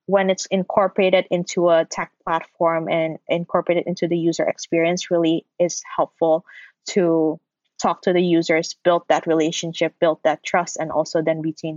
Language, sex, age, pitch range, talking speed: English, female, 20-39, 165-185 Hz, 160 wpm